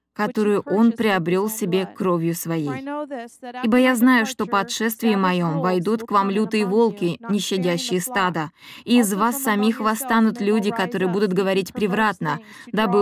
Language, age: Russian, 20-39